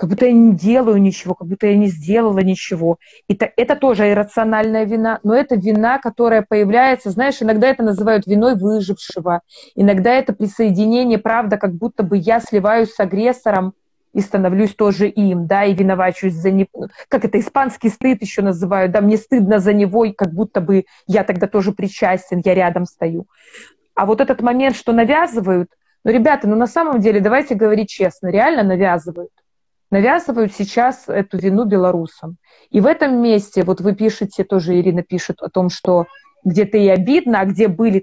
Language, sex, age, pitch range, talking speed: Russian, female, 20-39, 190-230 Hz, 175 wpm